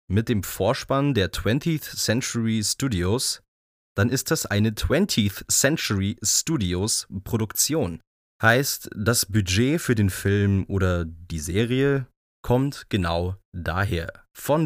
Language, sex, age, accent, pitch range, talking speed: German, male, 30-49, German, 95-125 Hz, 115 wpm